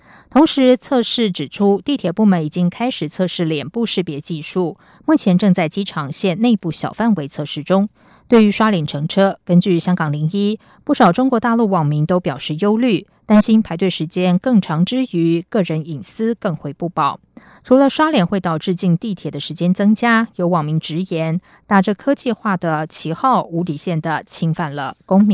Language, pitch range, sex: German, 165-220 Hz, female